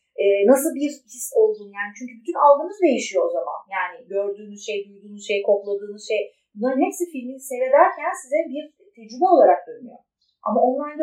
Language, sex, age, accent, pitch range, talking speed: Turkish, female, 30-49, native, 215-340 Hz, 160 wpm